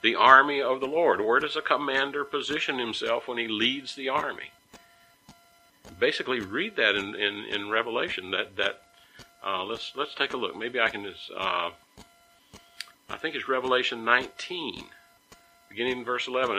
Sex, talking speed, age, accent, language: male, 165 wpm, 60-79, American, English